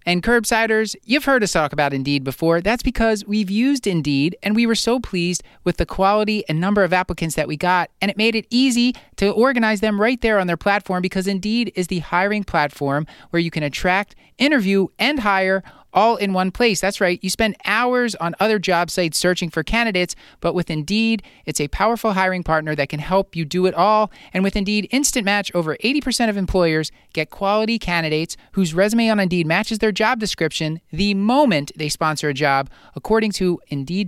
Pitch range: 165-220 Hz